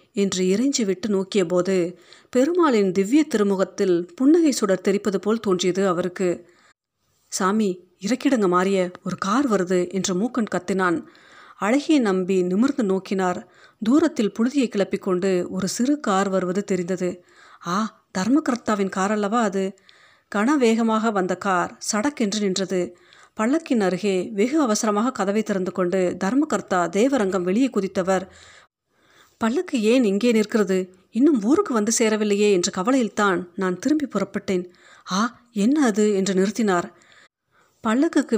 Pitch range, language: 185-235 Hz, Tamil